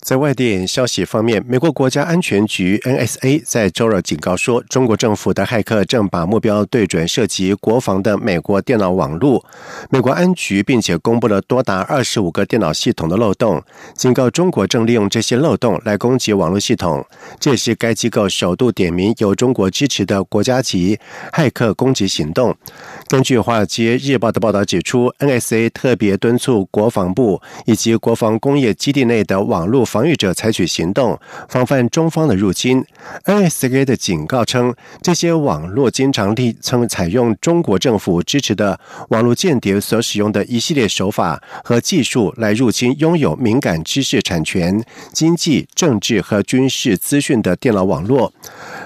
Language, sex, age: German, male, 50-69